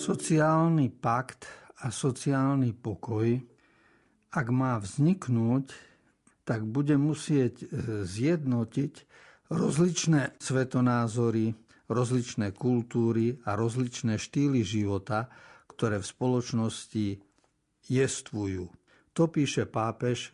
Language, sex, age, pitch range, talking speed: Slovak, male, 60-79, 110-140 Hz, 80 wpm